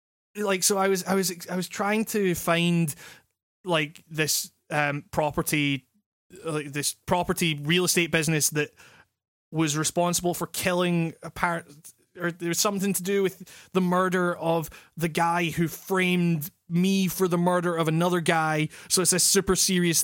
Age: 20-39